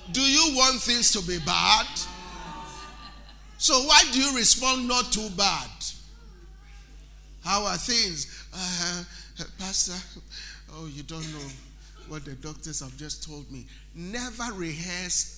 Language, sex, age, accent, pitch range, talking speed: English, male, 50-69, Nigerian, 150-190 Hz, 130 wpm